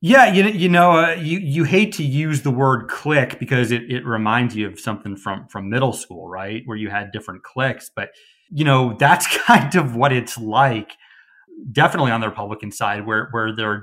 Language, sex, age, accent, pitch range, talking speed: English, male, 30-49, American, 110-135 Hz, 210 wpm